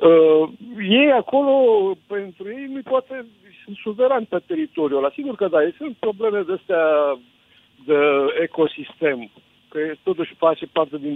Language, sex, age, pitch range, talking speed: Romanian, male, 50-69, 150-210 Hz, 145 wpm